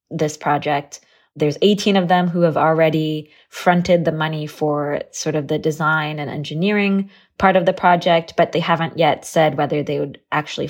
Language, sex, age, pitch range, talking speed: English, female, 20-39, 150-175 Hz, 180 wpm